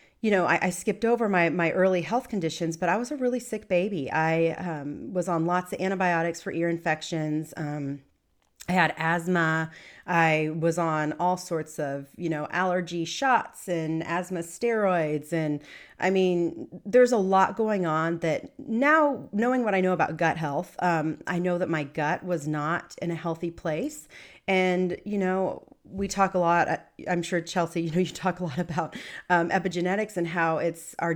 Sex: female